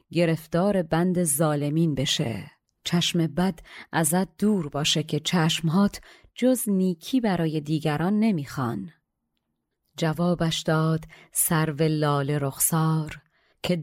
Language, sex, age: Persian, female, 30-49